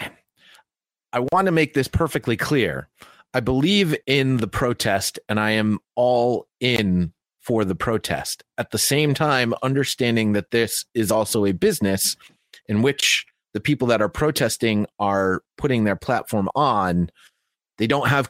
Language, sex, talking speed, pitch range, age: English, male, 150 wpm, 95-120 Hz, 30-49